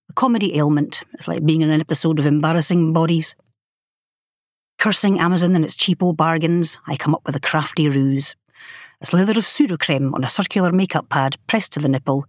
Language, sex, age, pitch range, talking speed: English, female, 40-59, 145-170 Hz, 190 wpm